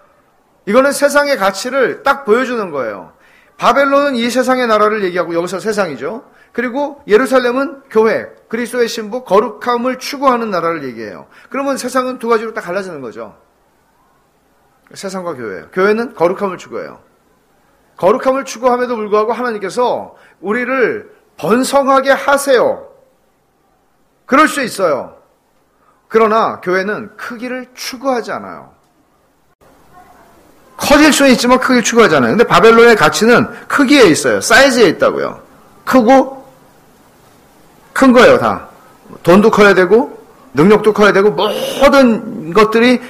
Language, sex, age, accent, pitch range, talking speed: English, male, 40-59, Korean, 210-260 Hz, 100 wpm